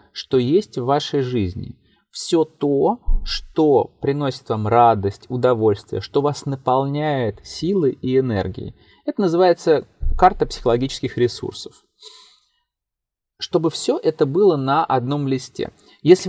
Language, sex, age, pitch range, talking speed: Russian, male, 20-39, 105-135 Hz, 115 wpm